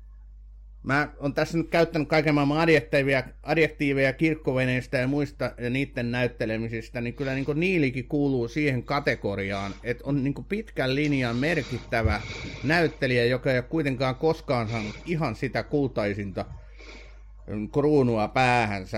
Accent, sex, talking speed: native, male, 125 wpm